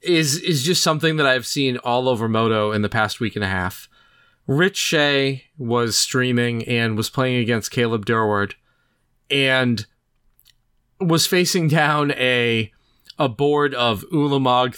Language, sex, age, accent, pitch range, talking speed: English, male, 30-49, American, 115-145 Hz, 145 wpm